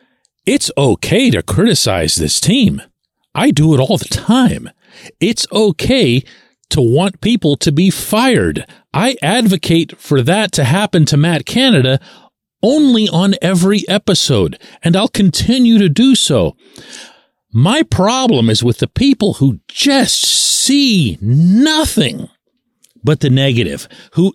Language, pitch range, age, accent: English, 135-225 Hz, 40-59, American